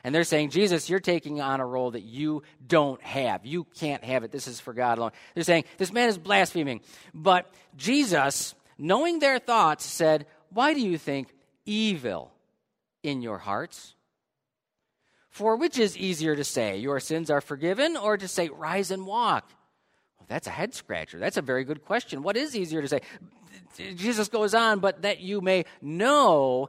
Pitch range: 140-195 Hz